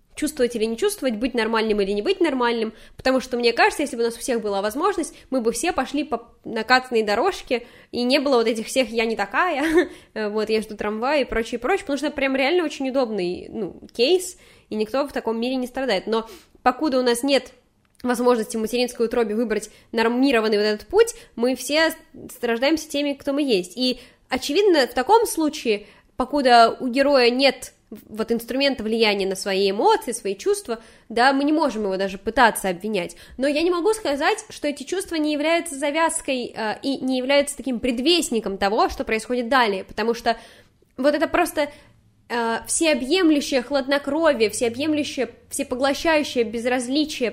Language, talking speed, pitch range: Russian, 175 wpm, 225-295 Hz